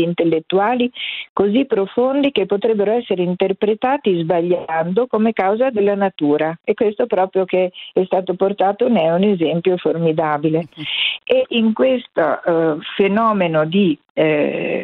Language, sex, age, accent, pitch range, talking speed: Italian, female, 50-69, native, 180-225 Hz, 125 wpm